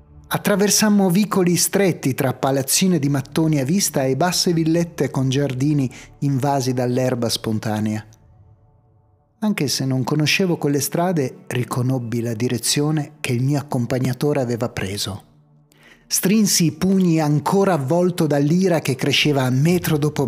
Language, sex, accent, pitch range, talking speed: Italian, male, native, 120-160 Hz, 125 wpm